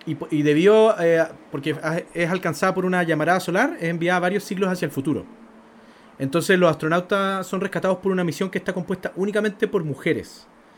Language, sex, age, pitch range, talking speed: Spanish, male, 30-49, 155-195 Hz, 165 wpm